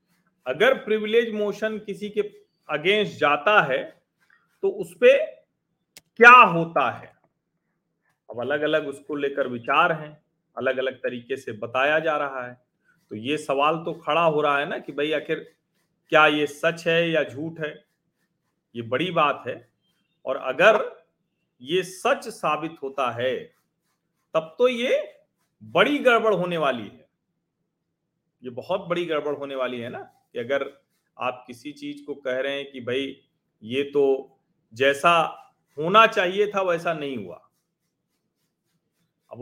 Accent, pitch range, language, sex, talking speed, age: native, 145-190 Hz, Hindi, male, 145 wpm, 40-59